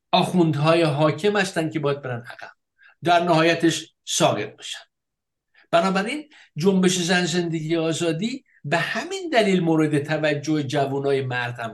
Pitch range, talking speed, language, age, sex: 145-220 Hz, 130 wpm, Persian, 60-79, male